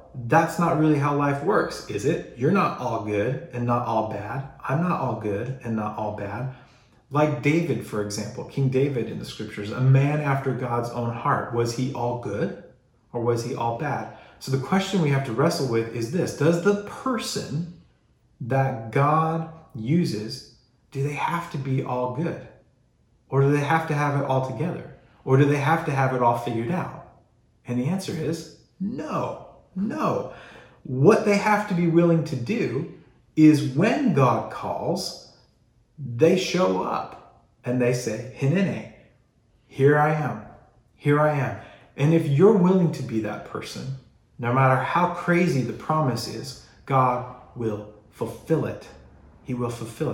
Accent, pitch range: American, 120-155 Hz